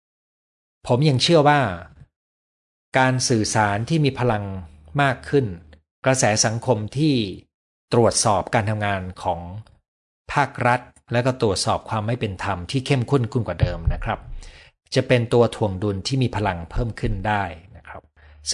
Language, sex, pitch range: Thai, male, 95-130 Hz